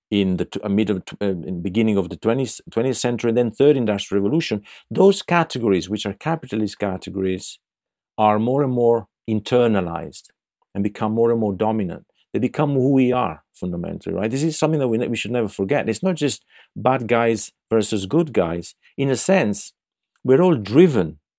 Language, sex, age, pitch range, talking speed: English, male, 50-69, 100-135 Hz, 180 wpm